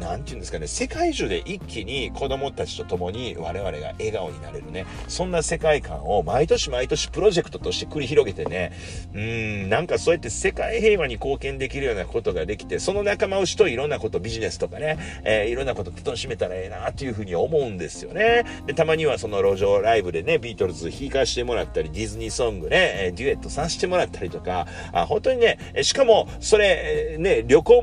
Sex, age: male, 40-59